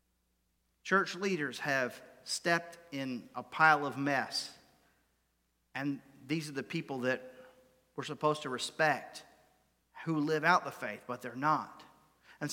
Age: 40-59